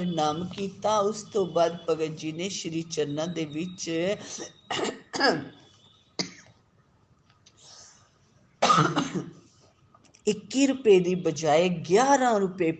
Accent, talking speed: native, 45 wpm